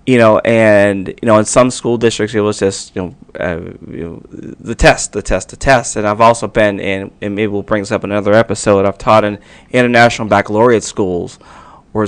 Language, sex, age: English, male, 30-49